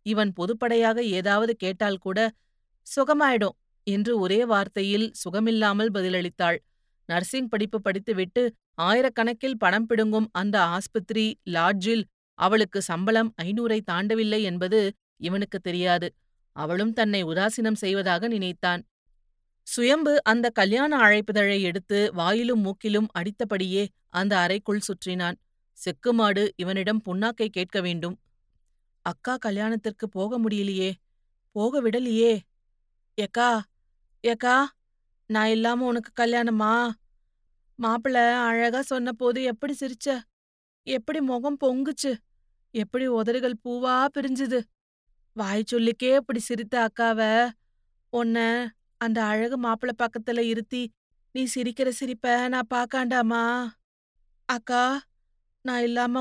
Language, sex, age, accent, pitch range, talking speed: Tamil, female, 30-49, native, 195-245 Hz, 95 wpm